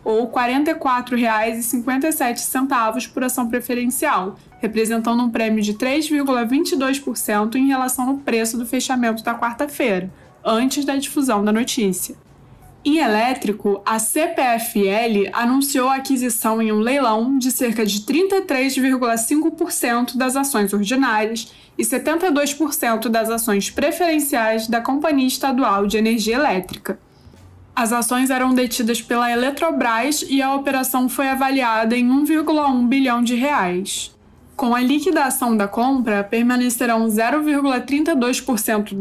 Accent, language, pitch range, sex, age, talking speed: Brazilian, Portuguese, 220-270 Hz, female, 20-39, 115 wpm